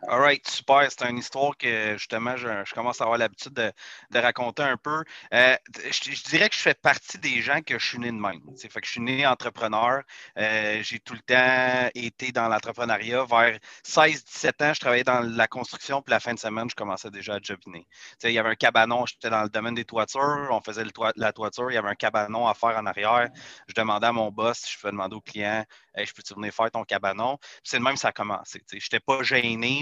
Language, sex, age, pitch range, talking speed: French, male, 30-49, 110-135 Hz, 245 wpm